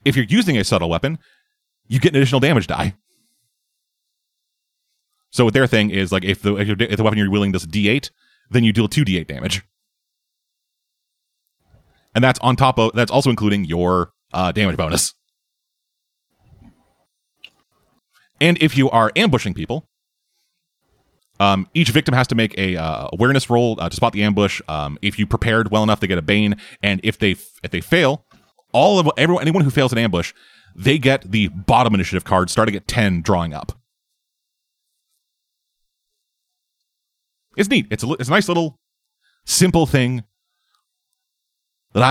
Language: English